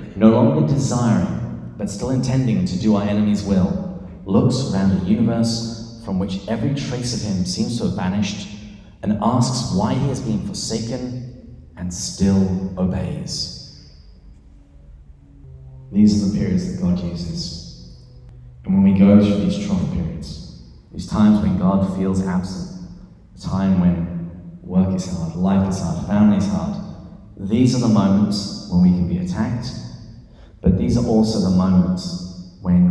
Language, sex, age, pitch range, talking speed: English, male, 30-49, 90-105 Hz, 155 wpm